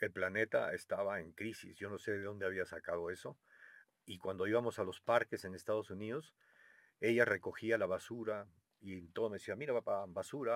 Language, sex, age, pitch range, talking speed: Spanish, male, 50-69, 95-120 Hz, 190 wpm